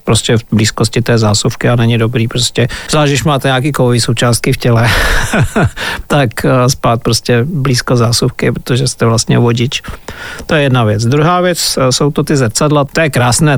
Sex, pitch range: male, 120-145 Hz